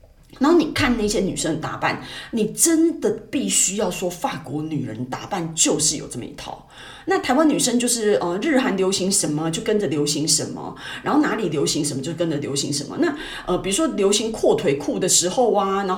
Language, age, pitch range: Chinese, 30-49, 155-250 Hz